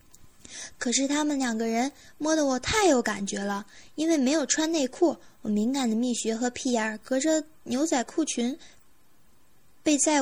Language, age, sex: Chinese, 20-39, female